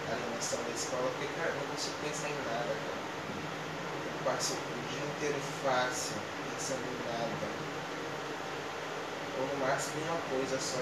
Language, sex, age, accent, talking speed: Portuguese, male, 20-39, Brazilian, 150 wpm